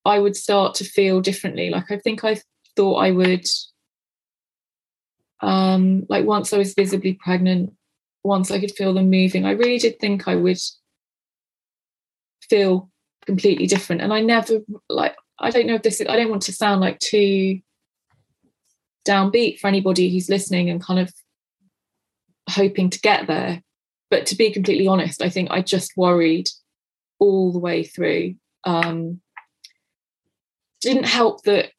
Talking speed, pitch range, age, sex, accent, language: 155 wpm, 180-205 Hz, 20-39, female, British, English